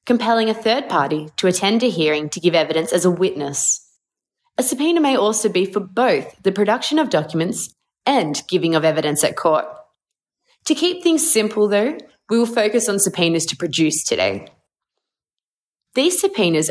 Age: 20-39